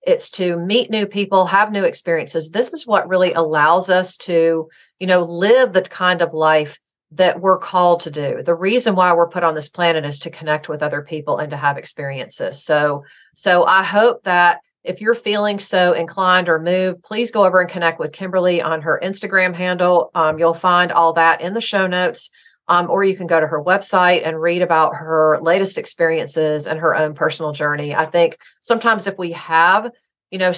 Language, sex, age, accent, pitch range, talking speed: English, female, 40-59, American, 160-190 Hz, 205 wpm